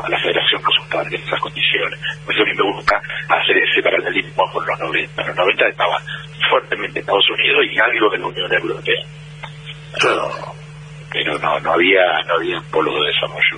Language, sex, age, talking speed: Spanish, male, 60-79, 190 wpm